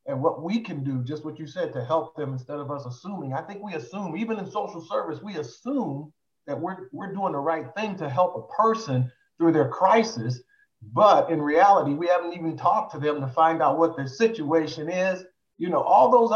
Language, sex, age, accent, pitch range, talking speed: English, male, 50-69, American, 135-180 Hz, 220 wpm